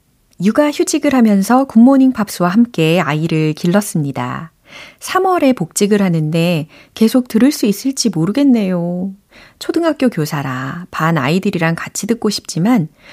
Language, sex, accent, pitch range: Korean, female, native, 165-235 Hz